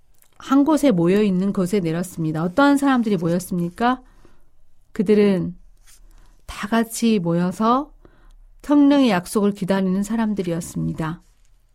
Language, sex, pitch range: Korean, female, 180-240 Hz